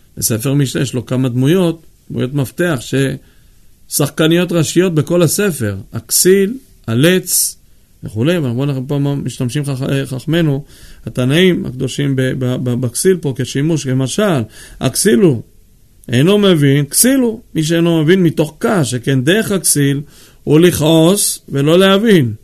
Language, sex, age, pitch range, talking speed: Hebrew, male, 40-59, 125-170 Hz, 120 wpm